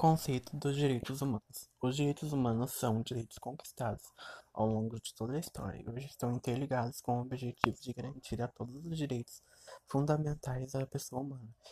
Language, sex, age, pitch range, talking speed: Portuguese, male, 20-39, 120-135 Hz, 170 wpm